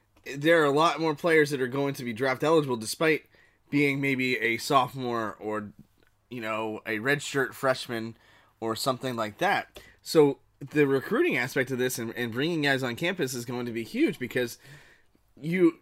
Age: 20-39